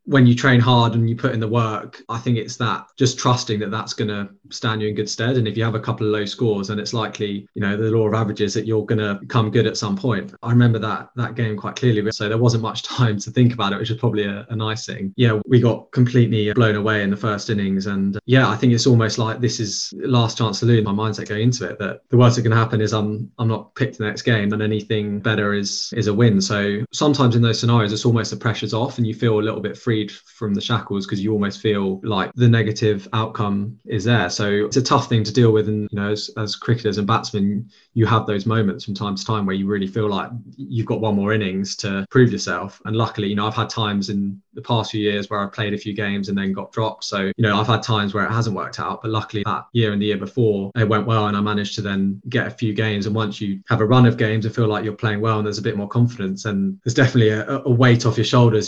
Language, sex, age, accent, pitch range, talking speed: English, male, 20-39, British, 105-115 Hz, 280 wpm